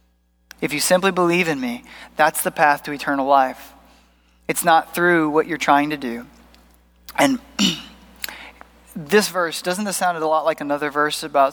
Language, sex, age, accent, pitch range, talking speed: English, male, 30-49, American, 130-165 Hz, 165 wpm